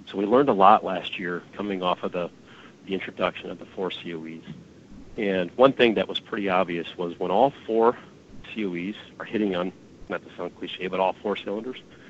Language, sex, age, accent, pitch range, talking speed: English, male, 40-59, American, 90-105 Hz, 200 wpm